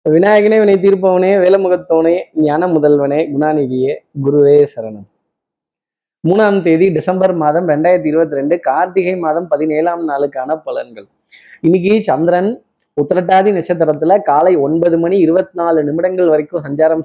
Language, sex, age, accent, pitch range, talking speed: Tamil, male, 20-39, native, 135-185 Hz, 120 wpm